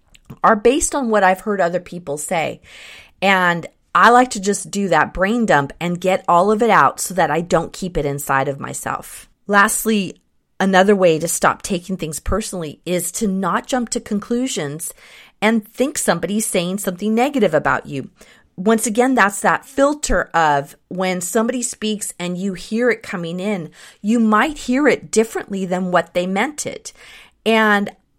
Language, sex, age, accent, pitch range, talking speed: English, female, 30-49, American, 165-220 Hz, 170 wpm